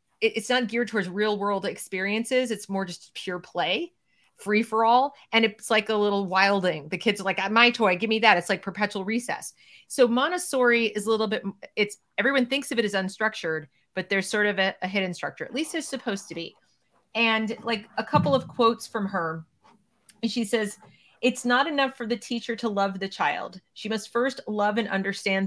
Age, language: 40-59, English